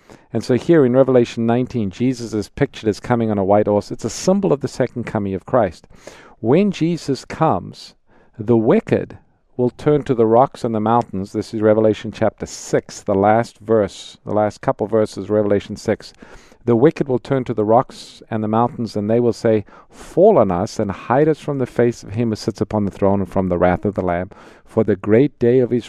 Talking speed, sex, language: 220 wpm, male, English